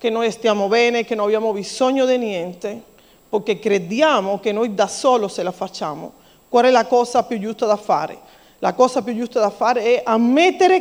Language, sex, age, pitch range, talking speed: Italian, female, 40-59, 215-290 Hz, 195 wpm